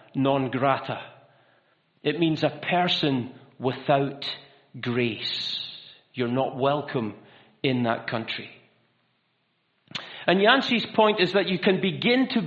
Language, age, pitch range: English, 40-59, 165-215 Hz